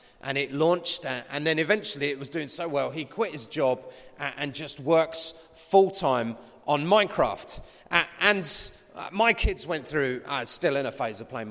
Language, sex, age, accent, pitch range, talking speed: English, male, 30-49, British, 130-185 Hz, 195 wpm